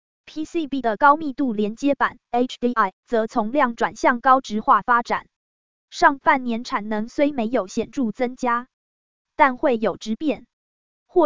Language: Chinese